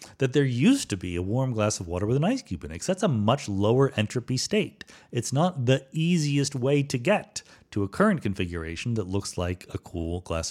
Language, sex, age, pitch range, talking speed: English, male, 40-59, 100-140 Hz, 225 wpm